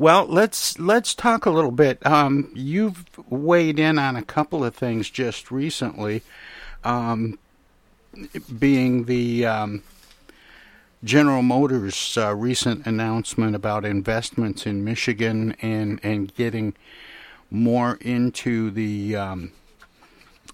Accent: American